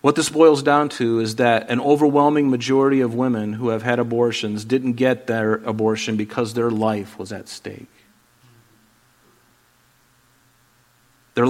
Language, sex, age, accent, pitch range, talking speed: English, male, 40-59, American, 115-125 Hz, 140 wpm